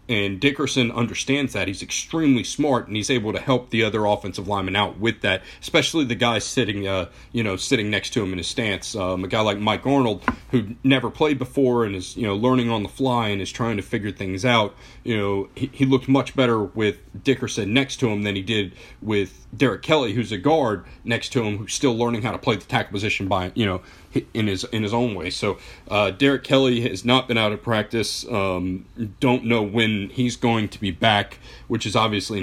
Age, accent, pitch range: 40-59, American, 100-120 Hz